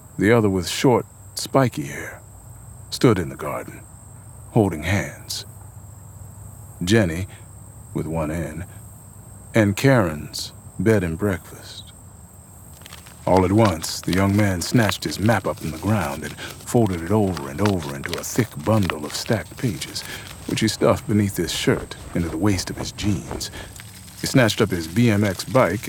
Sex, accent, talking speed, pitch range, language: male, American, 150 wpm, 85-110 Hz, English